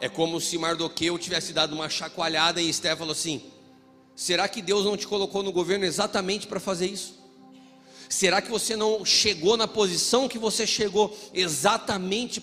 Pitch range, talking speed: 200-265 Hz, 170 wpm